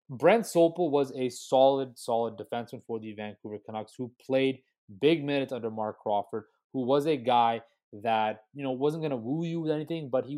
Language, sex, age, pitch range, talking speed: English, male, 20-39, 115-145 Hz, 195 wpm